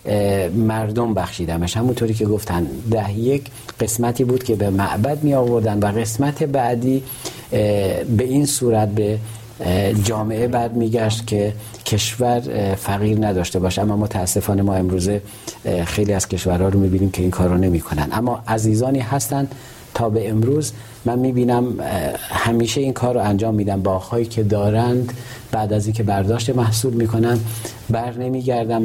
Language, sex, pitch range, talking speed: Persian, male, 105-125 Hz, 150 wpm